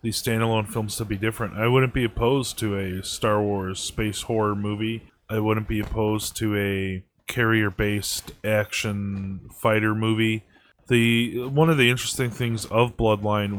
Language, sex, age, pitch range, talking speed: English, male, 20-39, 100-115 Hz, 155 wpm